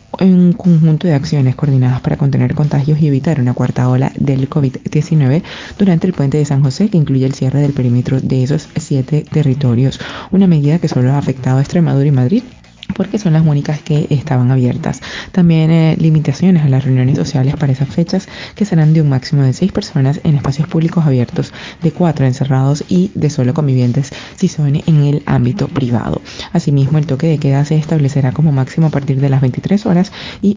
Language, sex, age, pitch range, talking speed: Spanish, female, 20-39, 135-160 Hz, 195 wpm